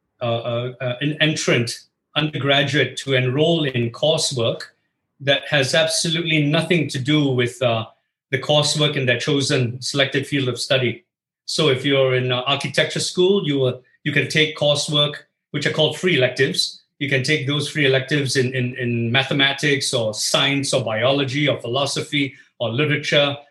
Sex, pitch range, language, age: male, 130-155 Hz, English, 50-69